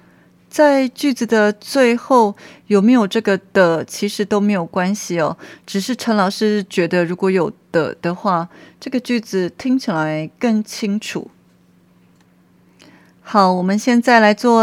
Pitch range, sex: 165-225 Hz, female